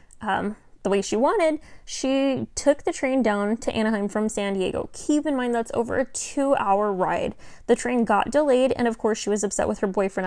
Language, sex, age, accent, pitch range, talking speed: English, female, 10-29, American, 205-250 Hz, 210 wpm